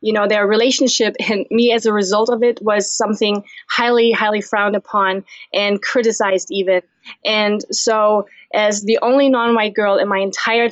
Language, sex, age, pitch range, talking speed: English, female, 20-39, 200-230 Hz, 170 wpm